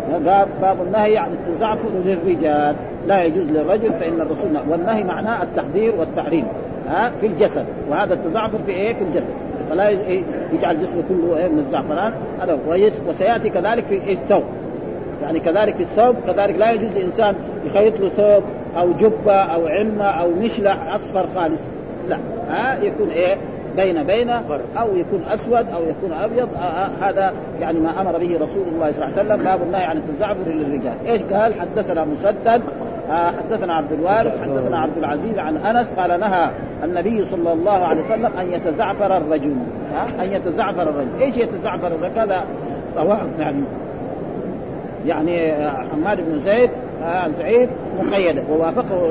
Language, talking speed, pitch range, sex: Arabic, 155 wpm, 170-220 Hz, male